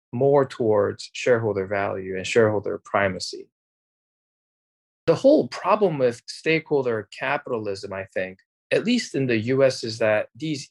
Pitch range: 105-150 Hz